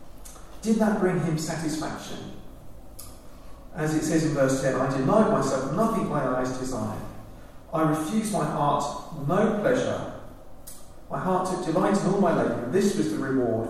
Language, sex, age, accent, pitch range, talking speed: English, male, 40-59, British, 125-165 Hz, 160 wpm